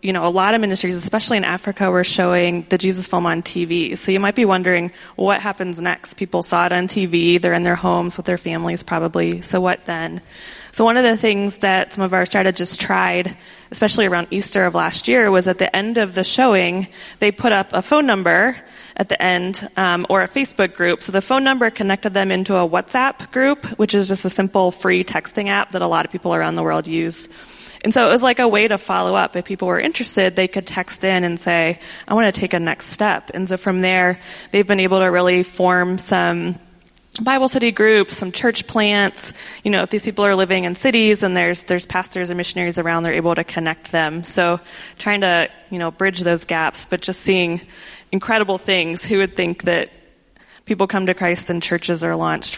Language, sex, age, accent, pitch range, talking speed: English, female, 20-39, American, 175-200 Hz, 225 wpm